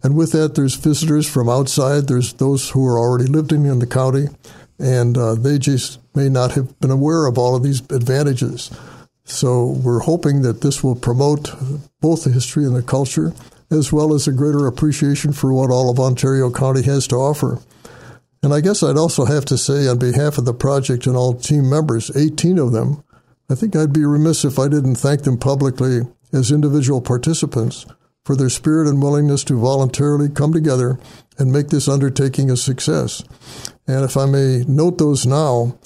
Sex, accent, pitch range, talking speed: male, American, 130-155 Hz, 190 wpm